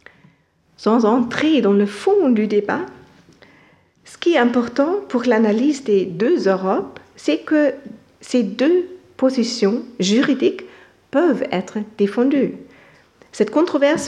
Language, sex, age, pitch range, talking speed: French, female, 50-69, 210-280 Hz, 115 wpm